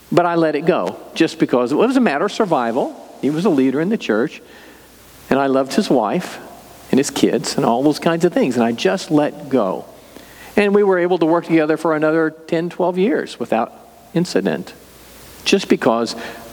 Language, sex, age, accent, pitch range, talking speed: English, male, 50-69, American, 130-170 Hz, 195 wpm